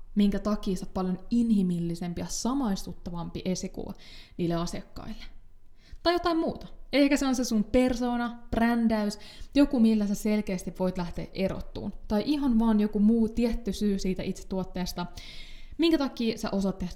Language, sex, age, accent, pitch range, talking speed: Finnish, female, 20-39, native, 185-240 Hz, 145 wpm